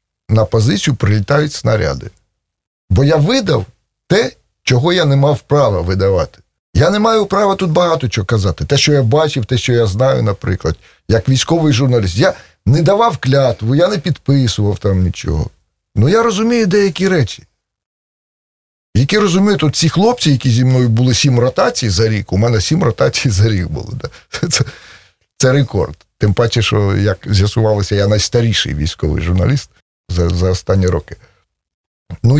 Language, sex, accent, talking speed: Russian, male, native, 155 wpm